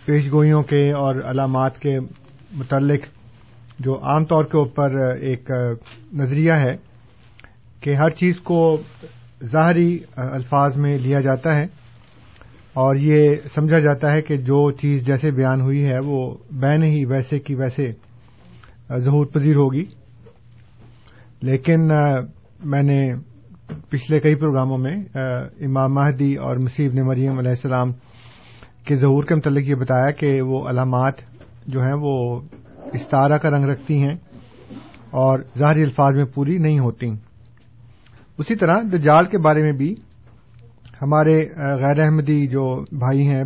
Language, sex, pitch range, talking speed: Urdu, male, 125-150 Hz, 135 wpm